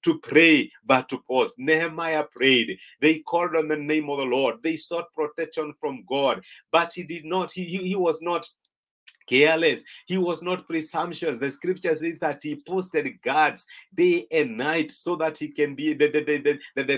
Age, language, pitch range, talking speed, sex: 50-69, English, 150-185 Hz, 185 wpm, male